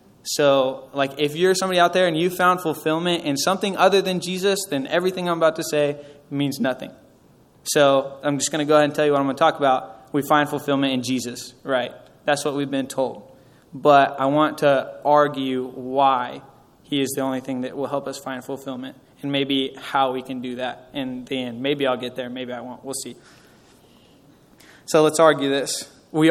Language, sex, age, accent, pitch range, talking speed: English, male, 20-39, American, 135-160 Hz, 210 wpm